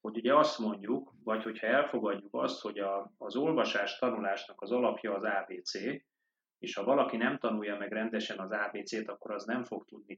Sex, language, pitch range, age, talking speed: male, Hungarian, 105-125 Hz, 30-49, 185 wpm